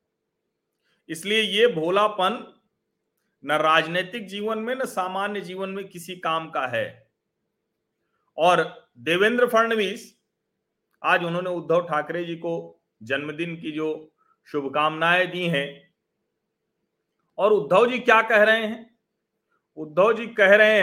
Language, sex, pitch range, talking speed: Hindi, male, 170-215 Hz, 120 wpm